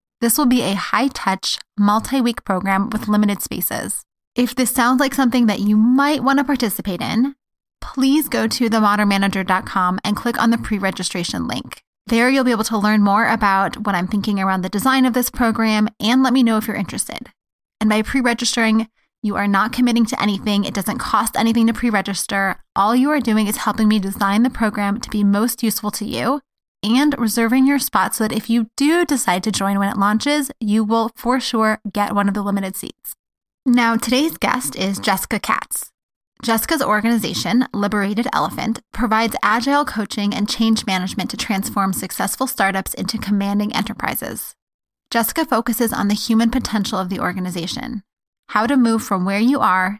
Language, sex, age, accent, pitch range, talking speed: English, female, 20-39, American, 200-240 Hz, 180 wpm